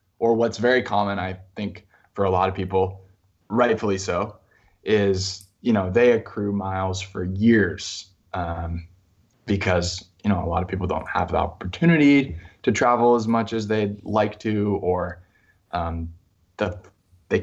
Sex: male